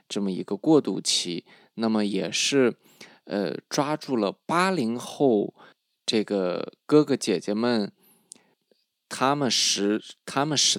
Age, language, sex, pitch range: 20-39, Chinese, male, 100-130 Hz